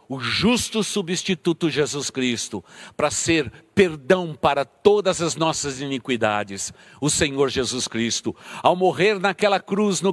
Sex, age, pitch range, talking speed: male, 60-79, 140-185 Hz, 130 wpm